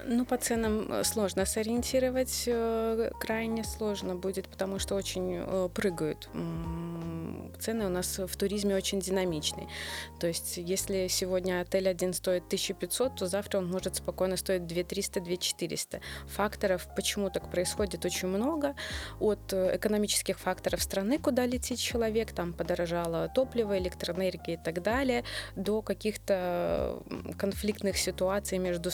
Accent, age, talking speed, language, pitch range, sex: native, 20-39, 120 wpm, Russian, 185-220 Hz, female